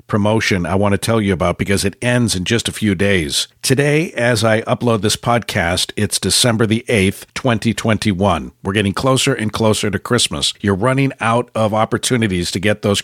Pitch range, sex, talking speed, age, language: 95-120 Hz, male, 190 wpm, 50-69, English